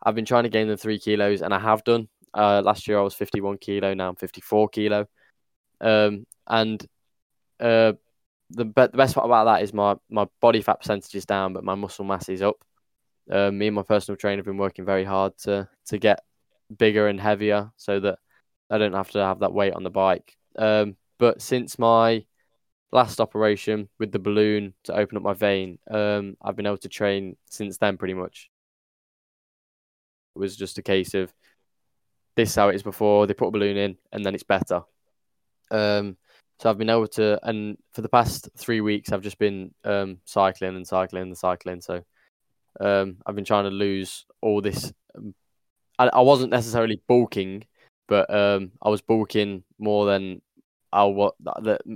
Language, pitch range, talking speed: English, 95-105 Hz, 190 wpm